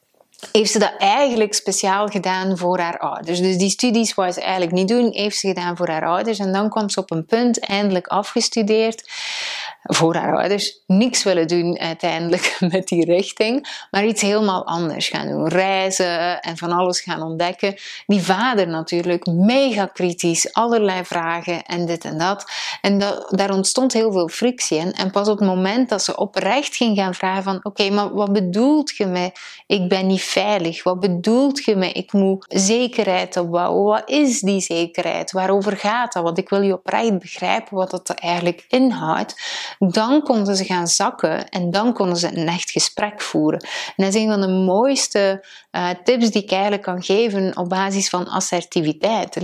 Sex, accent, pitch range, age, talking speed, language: female, Dutch, 180-215 Hz, 30-49, 185 wpm, Dutch